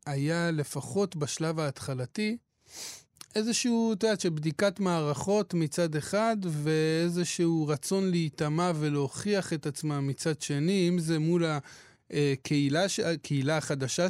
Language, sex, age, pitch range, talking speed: Hebrew, male, 20-39, 160-215 Hz, 110 wpm